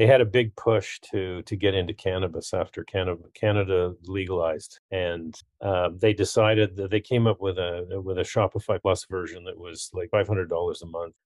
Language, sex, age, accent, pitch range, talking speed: English, male, 40-59, American, 95-115 Hz, 195 wpm